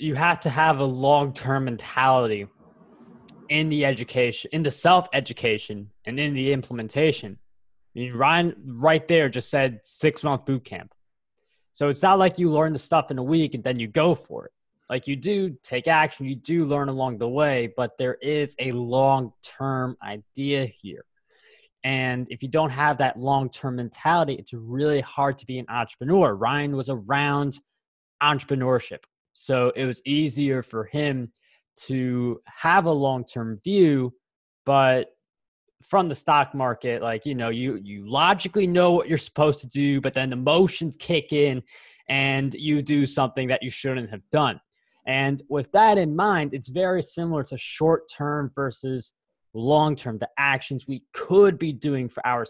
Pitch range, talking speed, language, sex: 125-155 Hz, 165 wpm, English, male